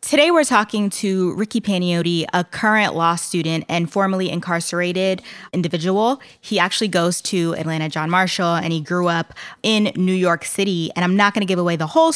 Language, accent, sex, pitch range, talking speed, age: English, American, female, 170-200 Hz, 185 wpm, 20-39